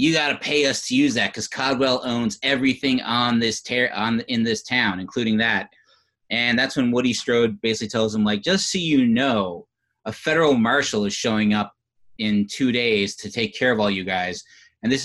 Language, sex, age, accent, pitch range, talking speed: English, male, 30-49, American, 110-145 Hz, 205 wpm